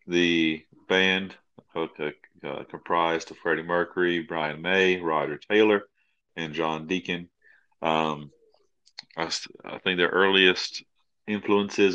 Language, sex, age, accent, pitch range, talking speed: English, male, 30-49, American, 85-100 Hz, 105 wpm